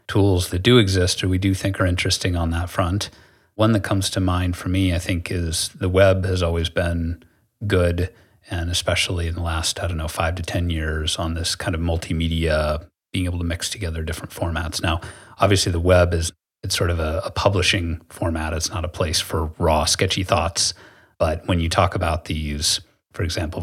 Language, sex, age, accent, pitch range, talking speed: English, male, 30-49, American, 85-95 Hz, 205 wpm